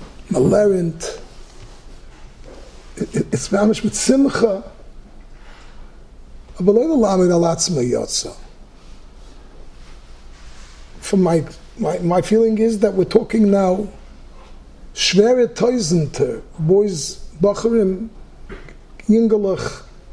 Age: 50-69